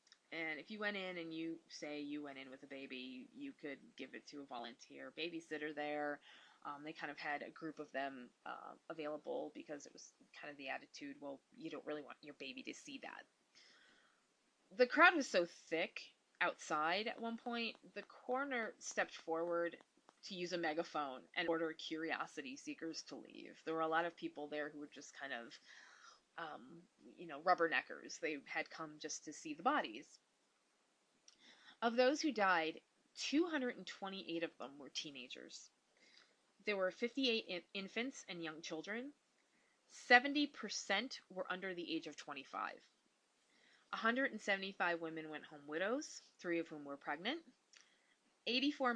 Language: English